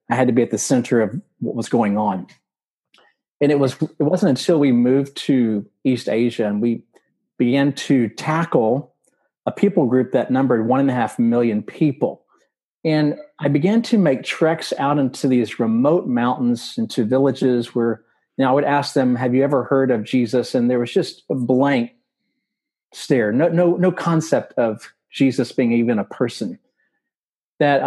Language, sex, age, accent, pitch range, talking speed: English, male, 40-59, American, 120-155 Hz, 180 wpm